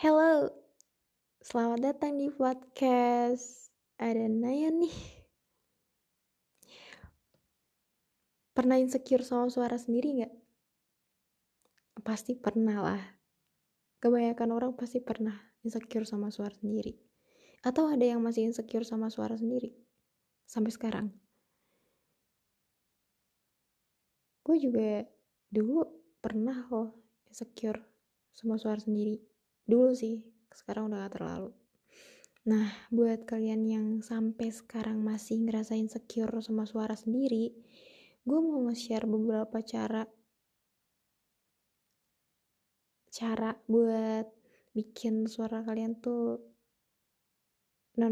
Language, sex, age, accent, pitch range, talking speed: Indonesian, female, 20-39, native, 220-245 Hz, 90 wpm